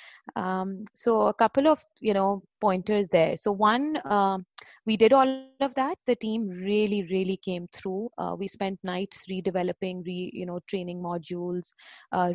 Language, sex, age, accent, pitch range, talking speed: English, female, 30-49, Indian, 185-215 Hz, 165 wpm